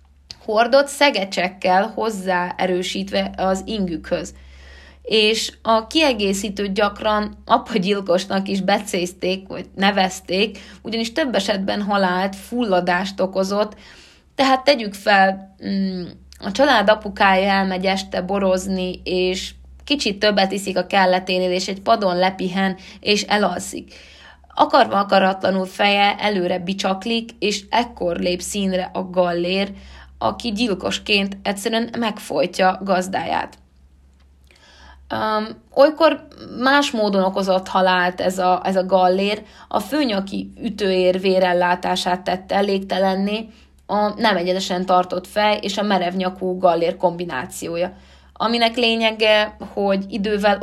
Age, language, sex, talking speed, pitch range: 20-39, Hungarian, female, 100 wpm, 180-210 Hz